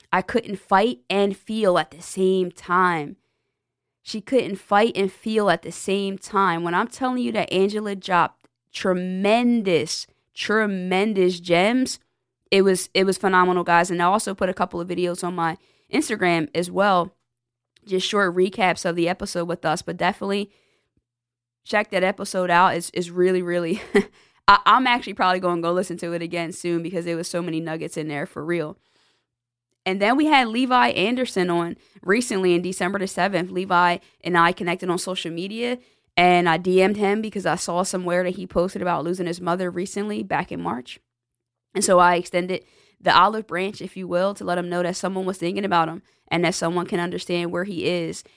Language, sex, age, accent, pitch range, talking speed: English, female, 20-39, American, 170-195 Hz, 190 wpm